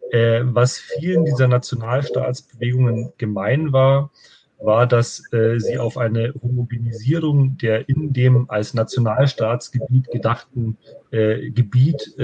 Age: 30-49